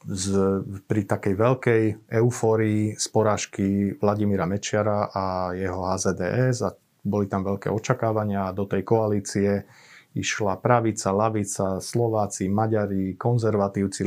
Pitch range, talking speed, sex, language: 100-115 Hz, 115 wpm, male, Slovak